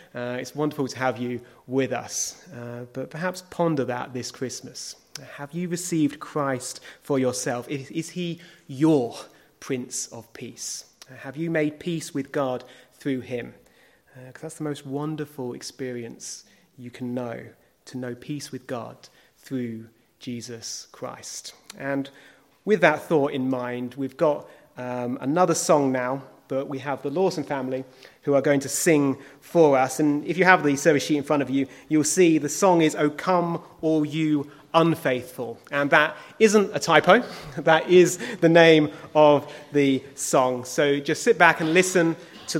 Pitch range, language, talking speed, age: 130-155 Hz, English, 170 wpm, 30-49